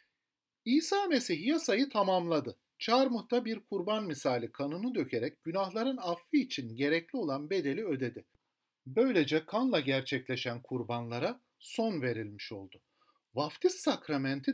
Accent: Turkish